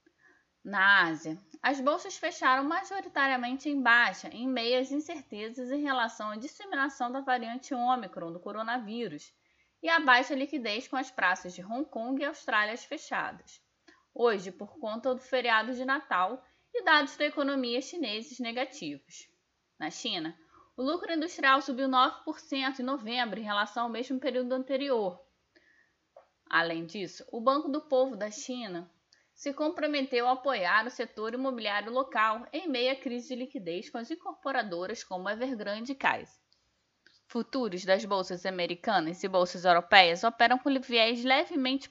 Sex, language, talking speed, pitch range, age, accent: female, Portuguese, 145 wpm, 205-275 Hz, 20-39, Brazilian